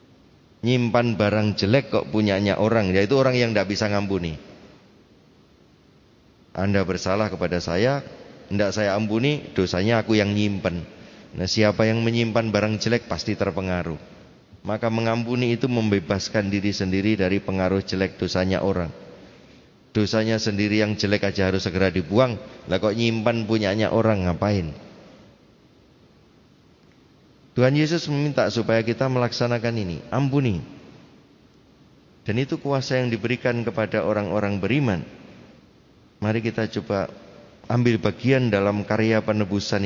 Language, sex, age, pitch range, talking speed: Indonesian, male, 30-49, 100-120 Hz, 120 wpm